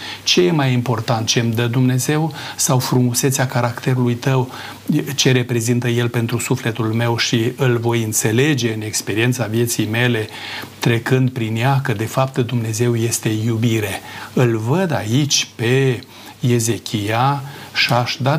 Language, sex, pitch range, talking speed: Romanian, male, 115-130 Hz, 140 wpm